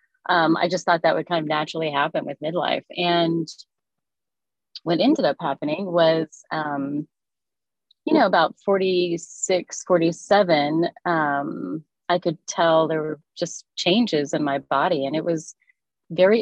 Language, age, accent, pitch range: English, 30-49, American, 155-190 Hz